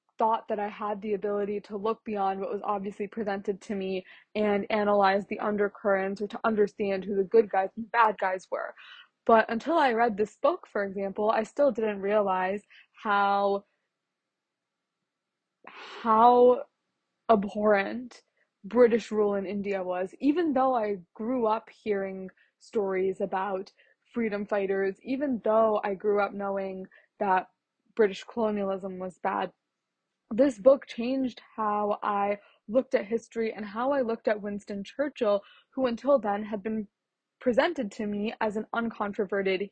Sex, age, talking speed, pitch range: female, 20-39, 145 wpm, 205-230 Hz